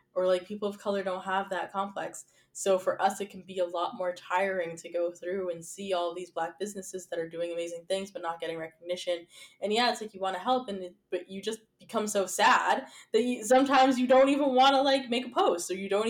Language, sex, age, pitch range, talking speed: English, female, 10-29, 180-255 Hz, 255 wpm